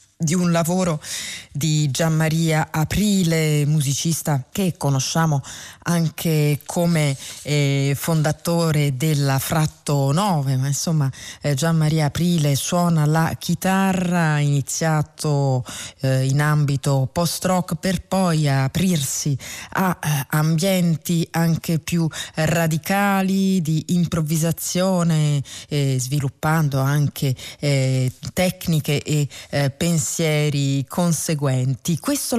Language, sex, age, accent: Italian, female, 30-49, native